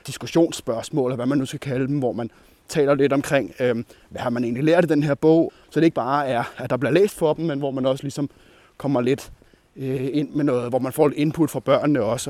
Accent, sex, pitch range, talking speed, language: native, male, 130-160 Hz, 260 wpm, Danish